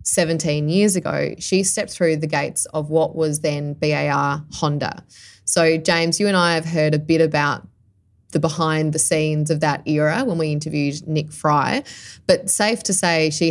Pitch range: 150-175 Hz